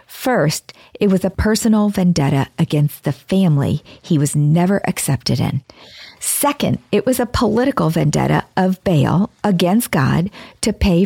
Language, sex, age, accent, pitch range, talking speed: English, female, 40-59, American, 155-205 Hz, 140 wpm